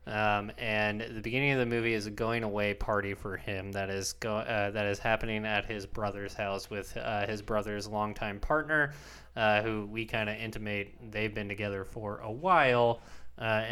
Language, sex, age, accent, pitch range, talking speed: English, male, 20-39, American, 100-115 Hz, 190 wpm